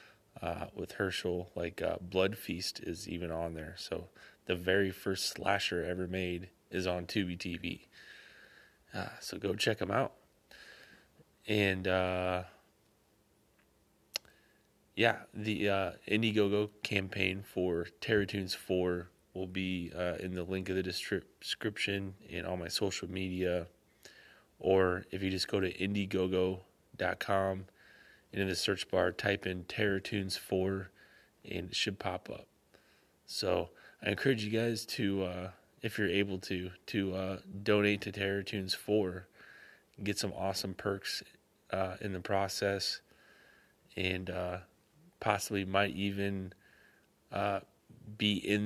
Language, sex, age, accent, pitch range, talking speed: English, male, 20-39, American, 90-100 Hz, 130 wpm